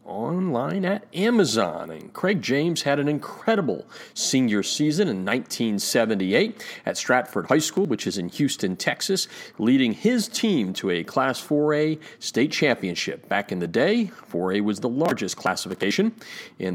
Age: 40-59